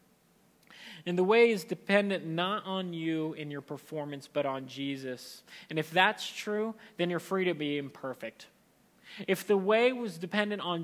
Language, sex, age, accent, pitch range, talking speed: English, male, 30-49, American, 180-220 Hz, 165 wpm